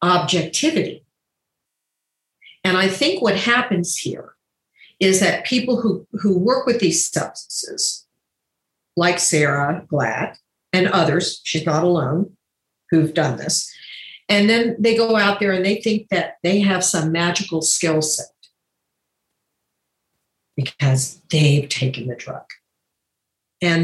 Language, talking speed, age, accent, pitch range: Dutch, 125 wpm, 50-69, American, 160-225 Hz